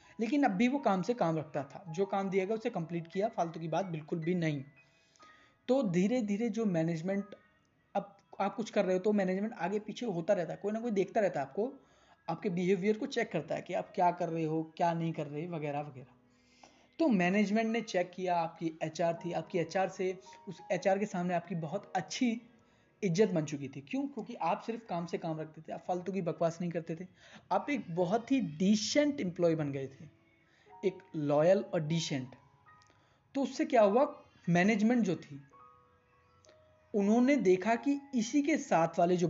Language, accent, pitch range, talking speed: Hindi, native, 165-220 Hz, 175 wpm